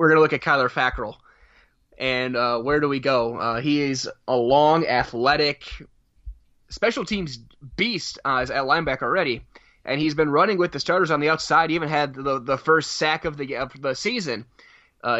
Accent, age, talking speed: American, 20-39, 195 wpm